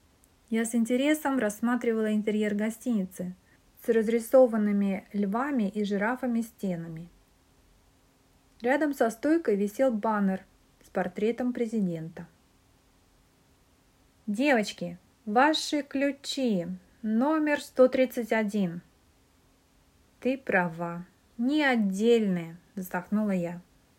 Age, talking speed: 30-49, 80 wpm